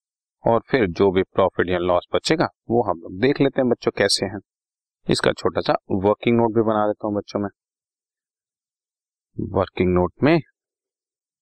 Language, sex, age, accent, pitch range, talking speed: Hindi, male, 30-49, native, 95-120 Hz, 165 wpm